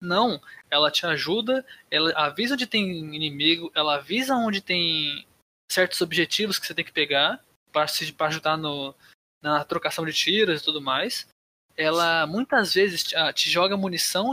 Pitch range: 155-205 Hz